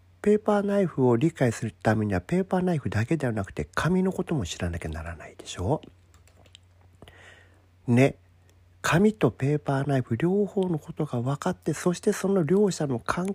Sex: male